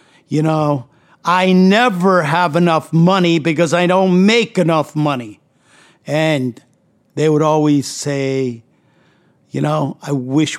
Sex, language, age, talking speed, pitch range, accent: male, English, 50-69, 125 wpm, 140-195 Hz, American